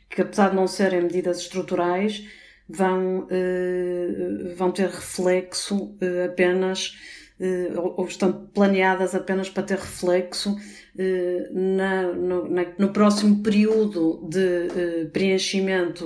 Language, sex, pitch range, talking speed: Portuguese, female, 175-195 Hz, 120 wpm